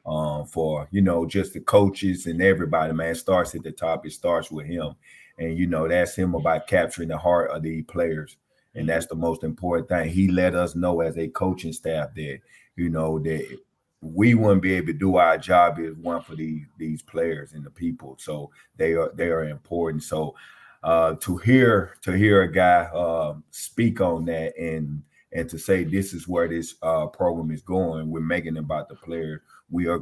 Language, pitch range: English, 80-90 Hz